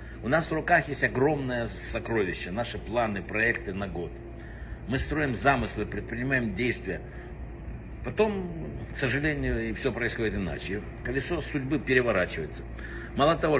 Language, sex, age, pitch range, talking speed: Russian, male, 60-79, 115-150 Hz, 130 wpm